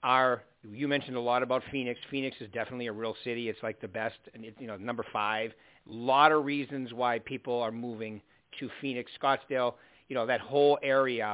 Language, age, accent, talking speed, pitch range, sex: English, 50-69, American, 195 wpm, 120-150 Hz, male